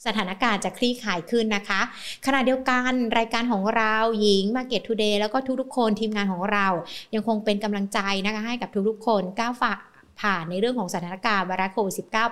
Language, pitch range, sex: Thai, 195-235 Hz, female